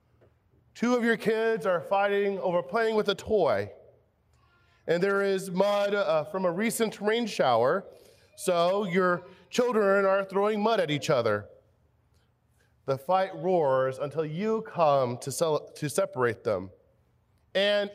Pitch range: 160-225 Hz